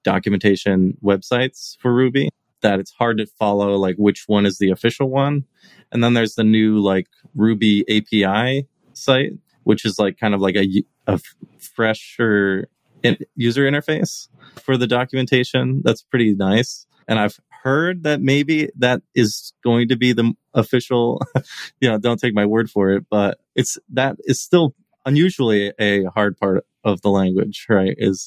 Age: 20-39